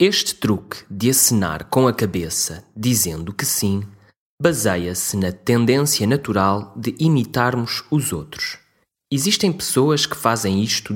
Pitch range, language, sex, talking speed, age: 95-135 Hz, English, male, 125 wpm, 20-39